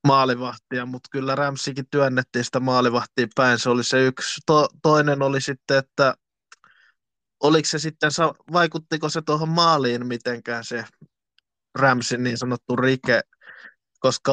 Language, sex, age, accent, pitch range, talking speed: Finnish, male, 20-39, native, 125-145 Hz, 130 wpm